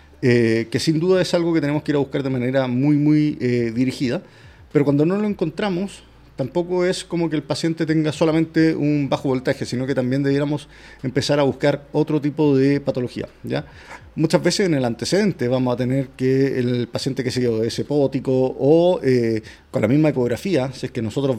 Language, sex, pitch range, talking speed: Spanish, male, 125-160 Hz, 200 wpm